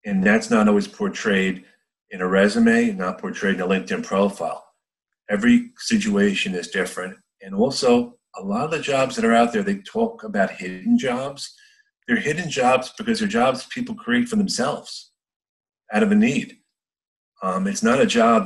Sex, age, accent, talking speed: male, 40-59, American, 170 wpm